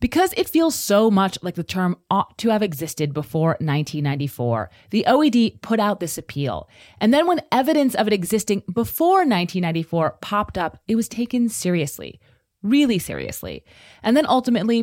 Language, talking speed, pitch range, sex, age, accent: English, 160 wpm, 160-235 Hz, female, 30-49, American